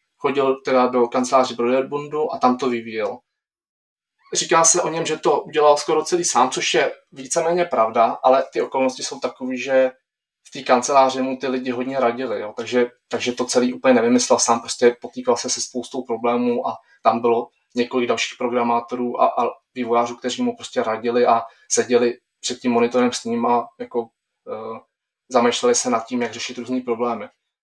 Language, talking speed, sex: Czech, 180 wpm, male